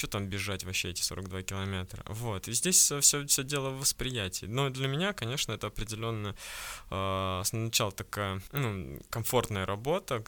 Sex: male